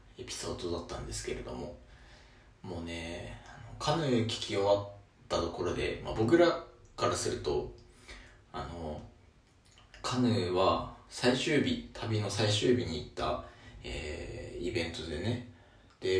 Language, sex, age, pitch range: Japanese, male, 20-39, 95-120 Hz